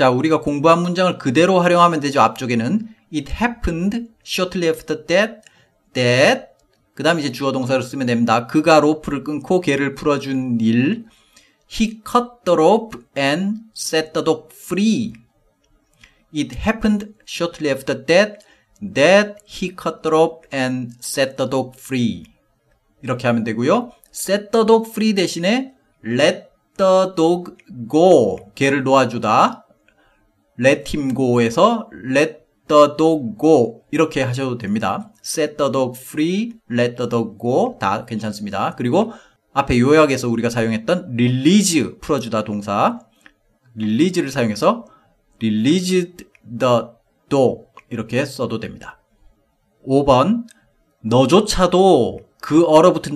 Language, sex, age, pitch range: Korean, male, 40-59, 130-185 Hz